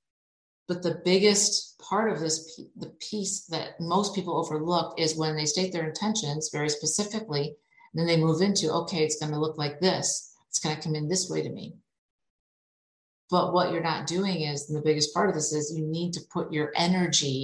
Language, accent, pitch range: English, American, 150-185 Hz